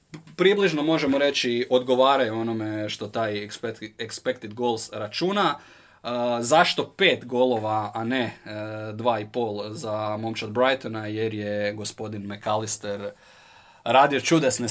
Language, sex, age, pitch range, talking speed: Croatian, male, 20-39, 105-125 Hz, 110 wpm